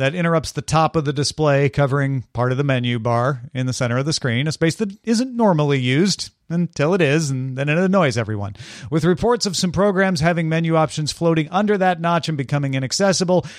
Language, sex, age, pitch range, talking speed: English, male, 40-59, 130-175 Hz, 210 wpm